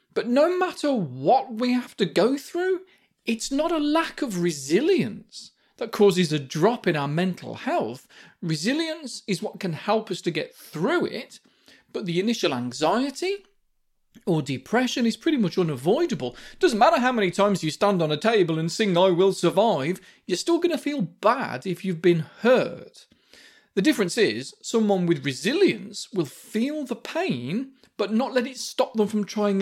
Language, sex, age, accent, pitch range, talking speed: English, male, 40-59, British, 175-260 Hz, 175 wpm